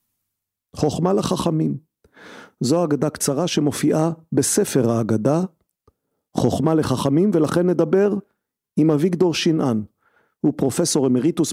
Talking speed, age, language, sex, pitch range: 95 wpm, 40-59, Hebrew, male, 130-165 Hz